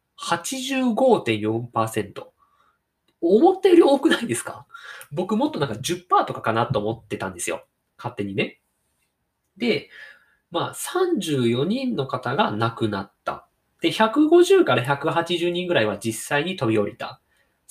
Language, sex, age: Japanese, male, 20-39